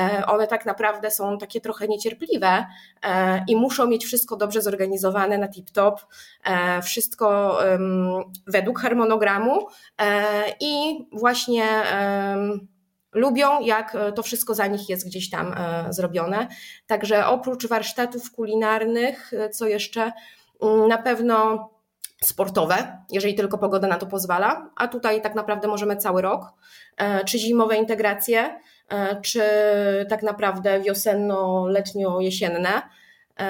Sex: female